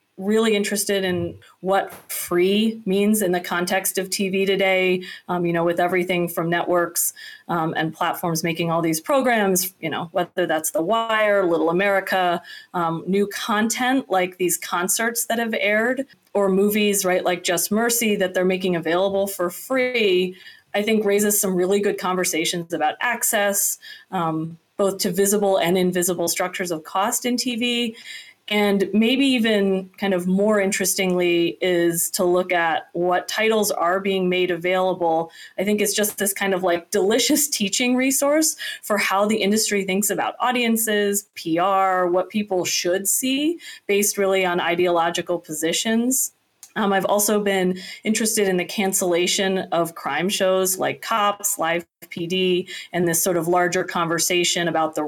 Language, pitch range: English, 175-210 Hz